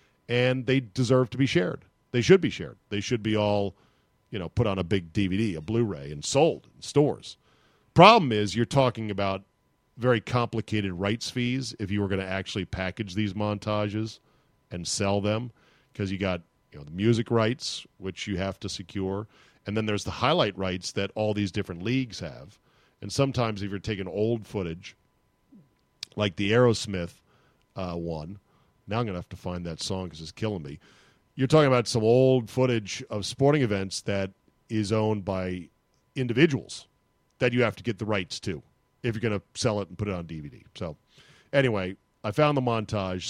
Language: English